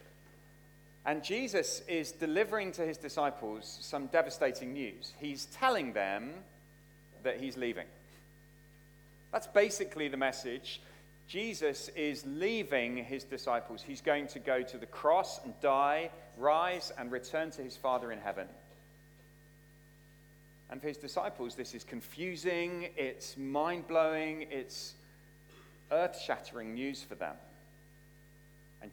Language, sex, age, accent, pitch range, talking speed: English, male, 40-59, British, 145-155 Hz, 120 wpm